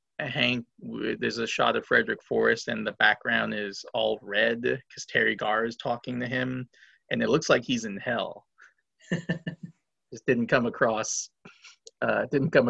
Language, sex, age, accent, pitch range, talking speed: English, male, 30-49, American, 115-145 Hz, 160 wpm